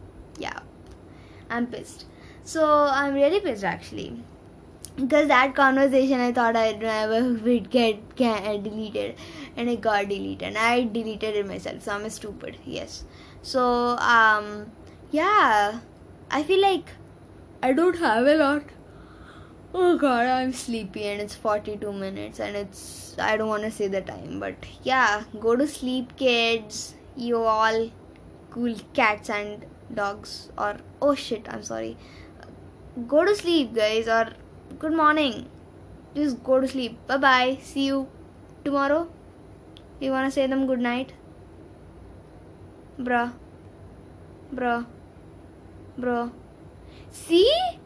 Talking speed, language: 130 wpm, English